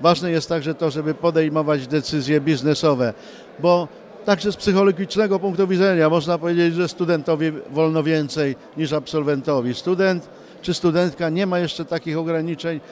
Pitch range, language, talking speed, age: 155-185 Hz, Polish, 140 wpm, 50-69